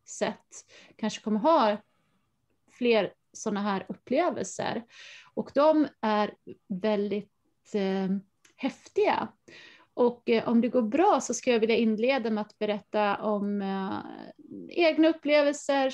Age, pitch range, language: 30-49, 205-265 Hz, Swedish